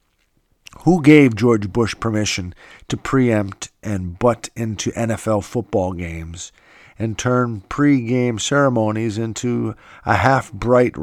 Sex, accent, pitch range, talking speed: male, American, 110-130 Hz, 110 wpm